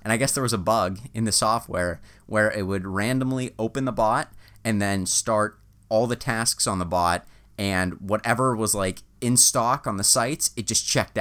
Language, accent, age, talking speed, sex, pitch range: English, American, 30-49, 205 wpm, male, 100-120 Hz